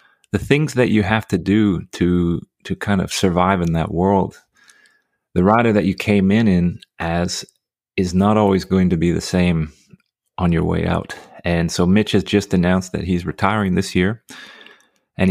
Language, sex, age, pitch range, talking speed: English, male, 30-49, 85-100 Hz, 185 wpm